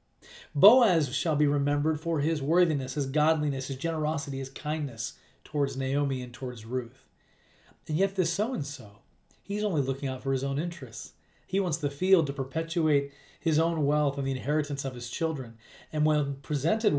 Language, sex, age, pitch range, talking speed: English, male, 30-49, 130-155 Hz, 170 wpm